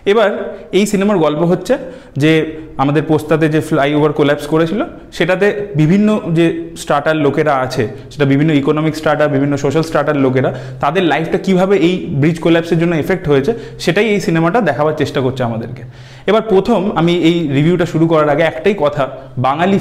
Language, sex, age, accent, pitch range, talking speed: Bengali, male, 30-49, native, 145-190 Hz, 160 wpm